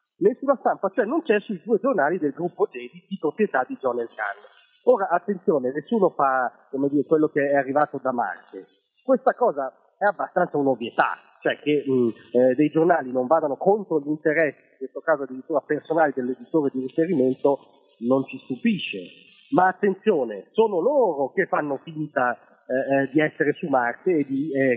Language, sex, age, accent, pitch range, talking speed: Italian, male, 40-59, native, 130-185 Hz, 170 wpm